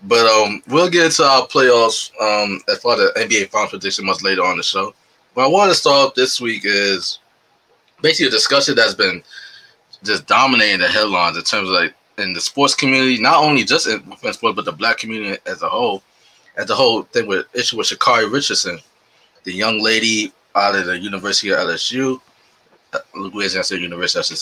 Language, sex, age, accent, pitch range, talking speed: English, male, 20-39, American, 100-140 Hz, 200 wpm